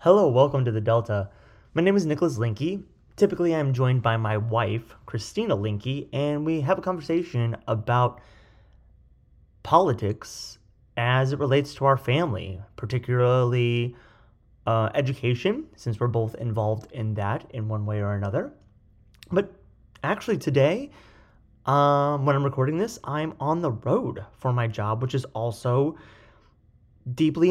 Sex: male